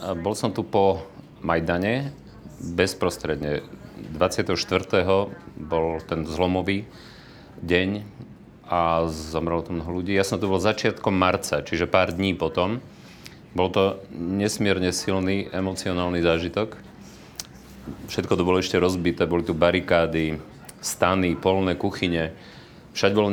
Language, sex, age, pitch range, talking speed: Slovak, male, 40-59, 85-105 Hz, 115 wpm